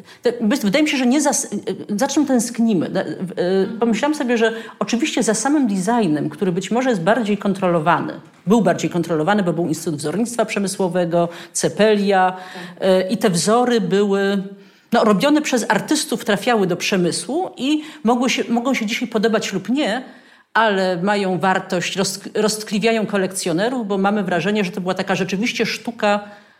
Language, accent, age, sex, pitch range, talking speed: Polish, native, 40-59, female, 190-240 Hz, 145 wpm